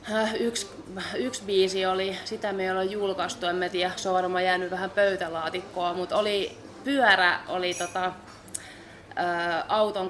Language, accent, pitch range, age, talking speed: Finnish, native, 180-210 Hz, 20-39, 125 wpm